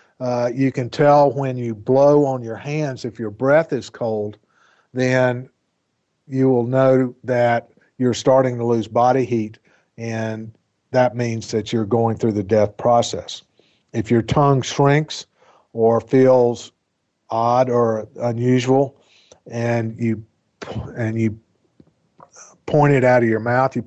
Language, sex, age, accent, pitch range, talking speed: English, male, 50-69, American, 115-135 Hz, 145 wpm